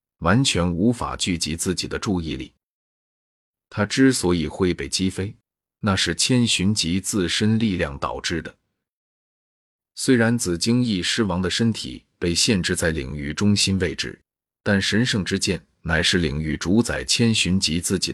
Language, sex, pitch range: Chinese, male, 85-110 Hz